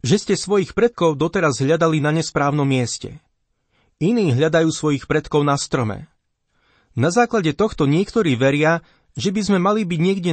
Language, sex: Slovak, male